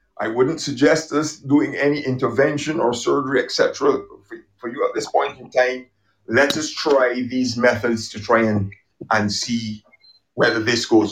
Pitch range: 110-145 Hz